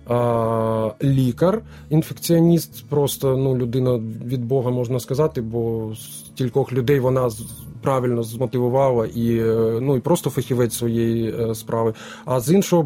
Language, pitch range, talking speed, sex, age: Ukrainian, 115-145 Hz, 120 wpm, male, 20-39